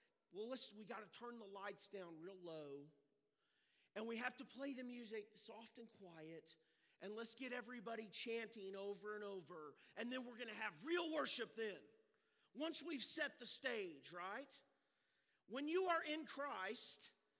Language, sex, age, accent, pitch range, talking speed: English, male, 40-59, American, 220-320 Hz, 170 wpm